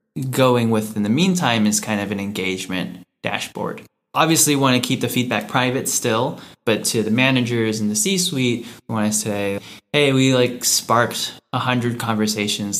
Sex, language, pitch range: male, English, 105-125 Hz